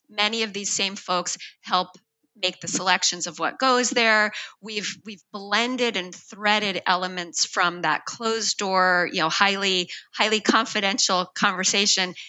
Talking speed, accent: 140 wpm, American